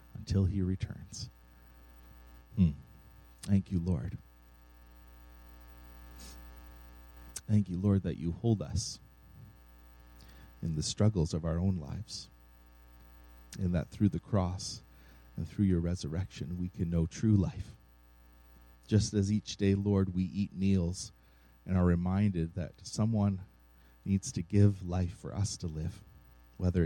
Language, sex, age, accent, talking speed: English, male, 40-59, American, 125 wpm